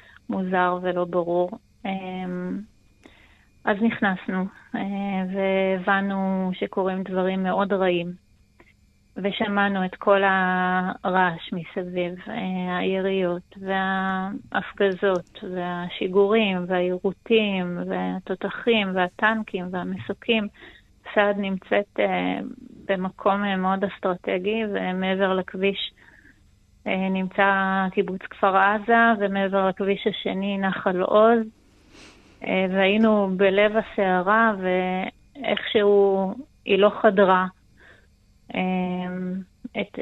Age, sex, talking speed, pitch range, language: 30-49, female, 70 wpm, 185-200 Hz, Hebrew